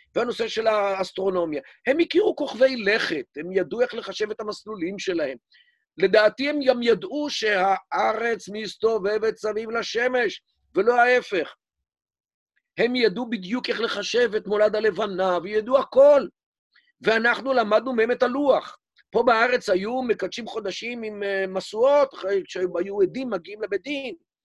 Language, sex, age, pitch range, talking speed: Hebrew, male, 50-69, 200-275 Hz, 125 wpm